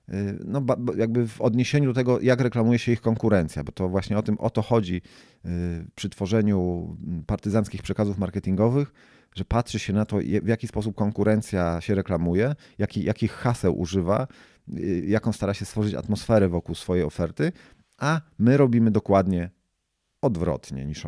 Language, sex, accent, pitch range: Polish, male, native, 90-115 Hz